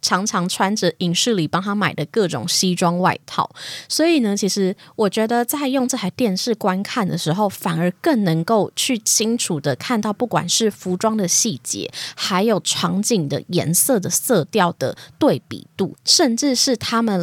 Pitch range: 175-235 Hz